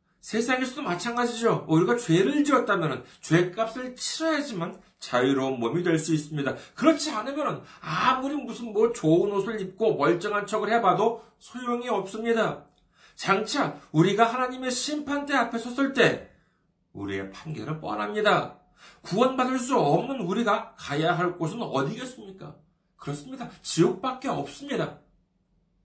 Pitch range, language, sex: 180-270 Hz, Korean, male